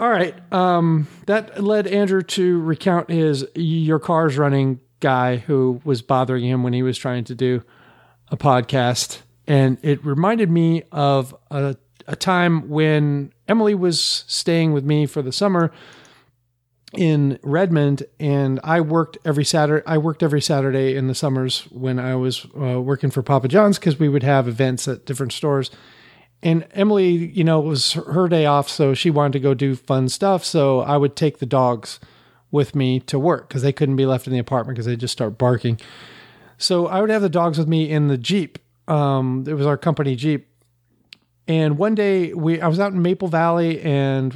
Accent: American